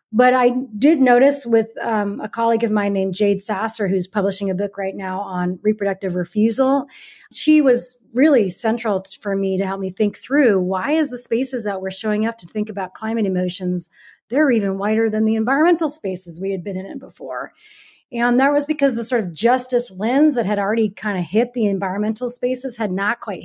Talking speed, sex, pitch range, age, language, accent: 205 wpm, female, 195-245 Hz, 30-49, English, American